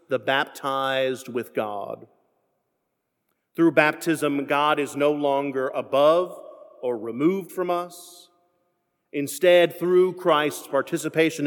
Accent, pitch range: American, 130-155 Hz